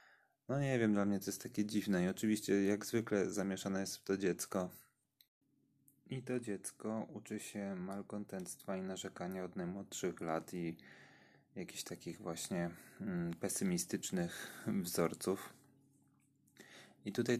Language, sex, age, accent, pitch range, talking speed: Polish, male, 30-49, native, 90-110 Hz, 130 wpm